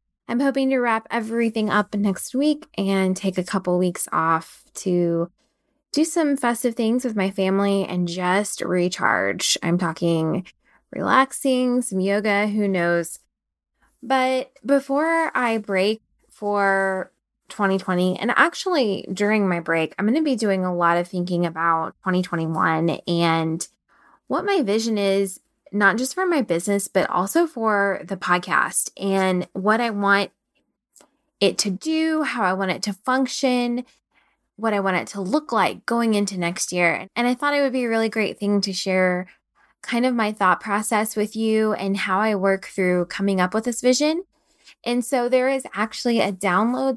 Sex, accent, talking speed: female, American, 165 wpm